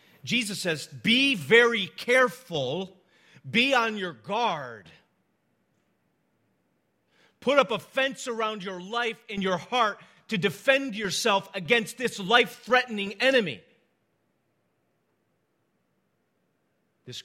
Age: 40-59